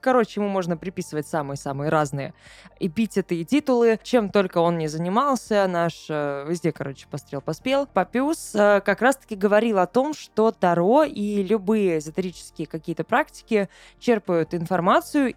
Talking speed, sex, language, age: 135 wpm, female, Russian, 20-39